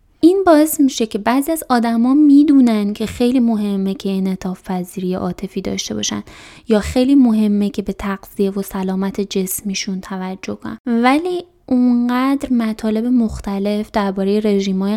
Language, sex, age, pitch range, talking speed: Persian, female, 20-39, 195-240 Hz, 135 wpm